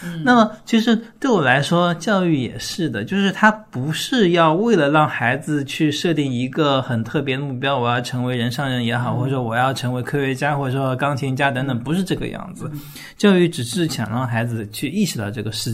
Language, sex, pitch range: Chinese, male, 120-165 Hz